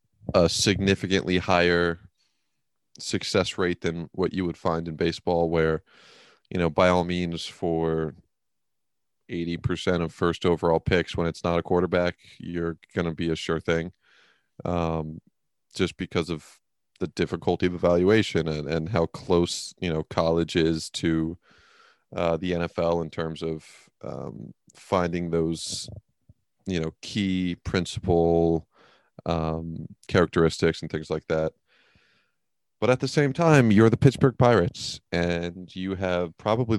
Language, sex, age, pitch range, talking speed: English, male, 30-49, 85-95 Hz, 140 wpm